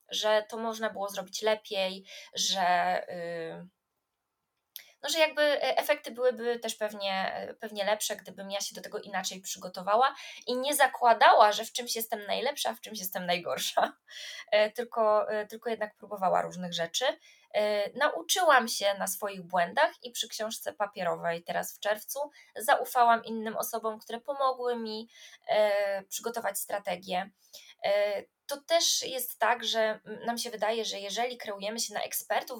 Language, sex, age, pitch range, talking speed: Polish, female, 20-39, 195-250 Hz, 135 wpm